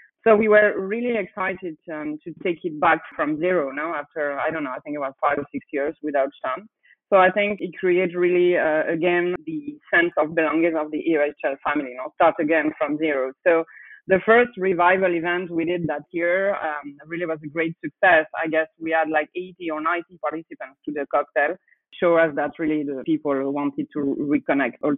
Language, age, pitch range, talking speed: English, 30-49, 150-190 Hz, 205 wpm